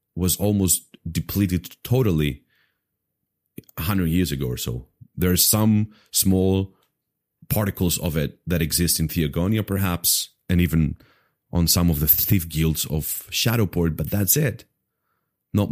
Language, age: English, 30-49